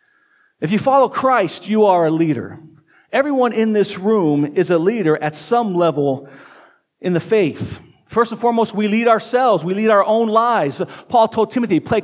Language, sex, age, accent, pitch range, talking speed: English, male, 40-59, American, 155-235 Hz, 180 wpm